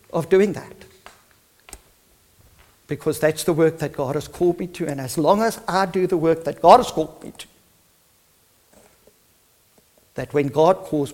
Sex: male